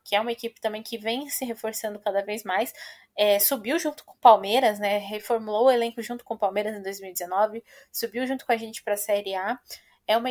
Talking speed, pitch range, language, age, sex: 225 wpm, 205-240 Hz, Portuguese, 10-29, female